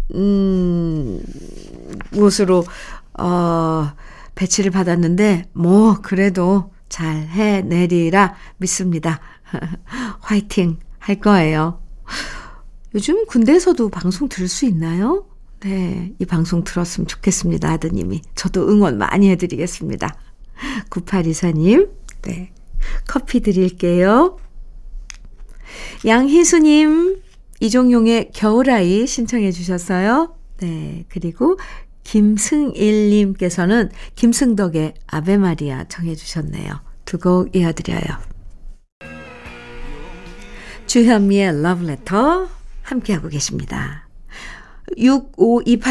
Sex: female